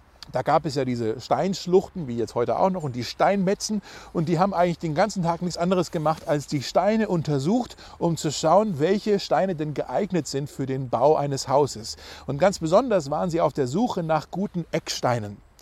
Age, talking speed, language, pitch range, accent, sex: 40-59, 200 wpm, German, 140-190 Hz, German, male